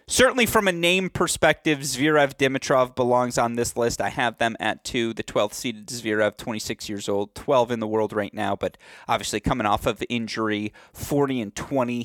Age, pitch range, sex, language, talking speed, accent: 30-49, 110-130 Hz, male, English, 190 wpm, American